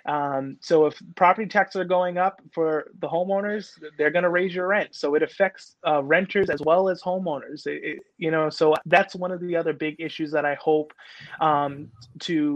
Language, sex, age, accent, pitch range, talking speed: English, male, 30-49, American, 150-180 Hz, 195 wpm